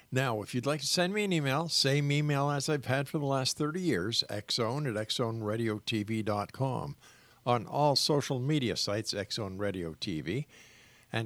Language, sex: English, male